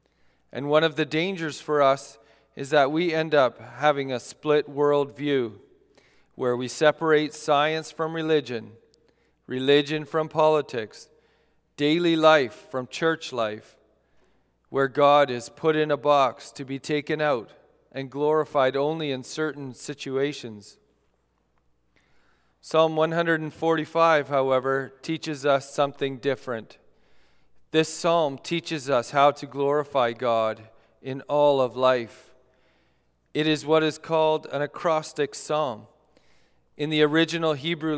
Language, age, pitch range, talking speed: English, 40-59, 130-155 Hz, 125 wpm